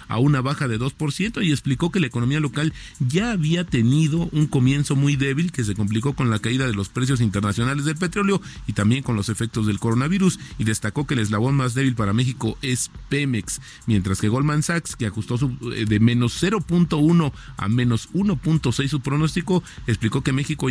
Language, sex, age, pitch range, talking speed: Spanish, male, 40-59, 110-150 Hz, 190 wpm